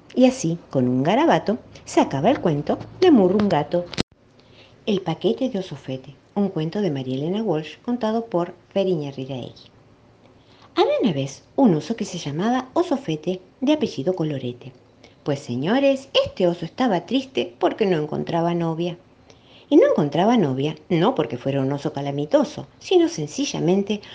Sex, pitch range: female, 155-235 Hz